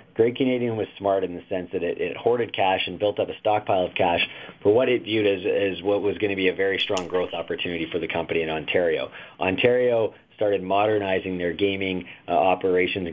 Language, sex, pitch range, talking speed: English, male, 90-105 Hz, 215 wpm